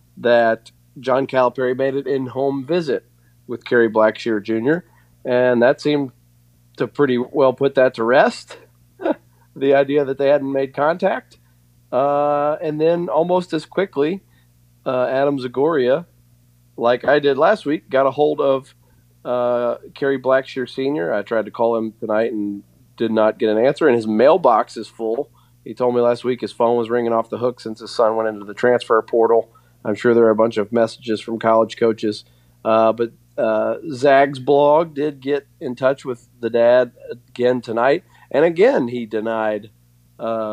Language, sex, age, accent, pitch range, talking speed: English, male, 30-49, American, 110-130 Hz, 175 wpm